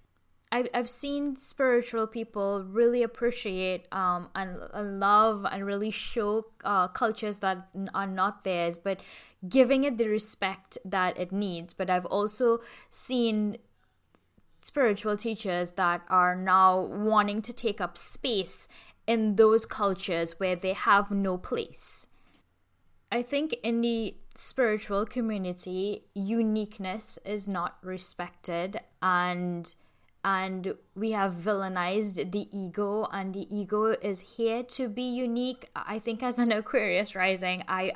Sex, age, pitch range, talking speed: female, 10-29, 185-225 Hz, 125 wpm